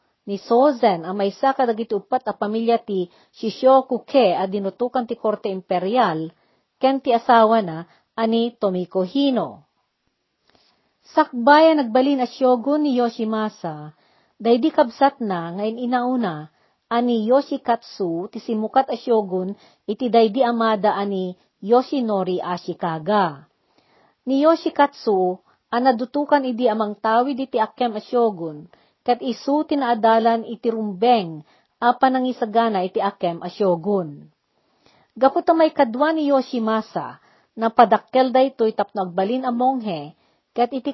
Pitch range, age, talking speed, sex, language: 200-255 Hz, 40-59, 105 wpm, female, Filipino